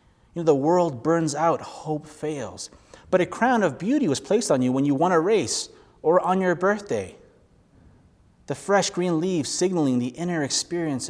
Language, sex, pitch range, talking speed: English, male, 115-155 Hz, 185 wpm